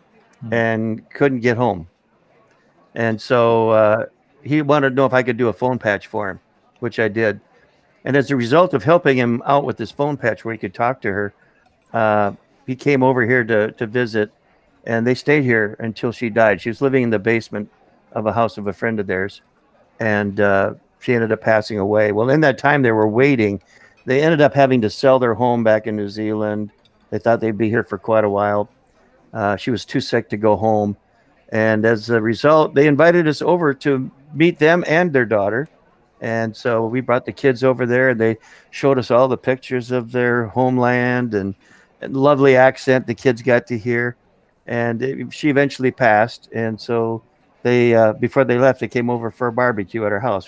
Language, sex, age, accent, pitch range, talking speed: English, male, 50-69, American, 110-130 Hz, 205 wpm